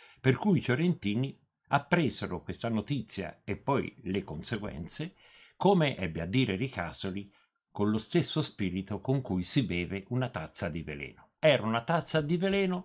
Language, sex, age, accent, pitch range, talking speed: Italian, male, 50-69, native, 90-140 Hz, 155 wpm